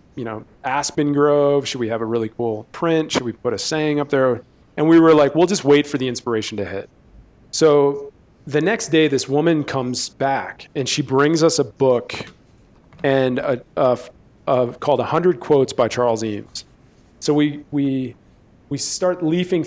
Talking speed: 185 wpm